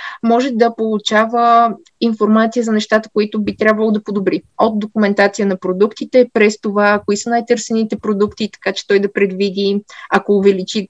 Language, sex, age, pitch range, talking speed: Bulgarian, female, 20-39, 200-235 Hz, 155 wpm